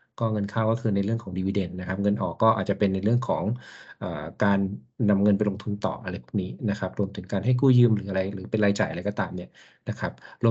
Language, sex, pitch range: Thai, male, 100-120 Hz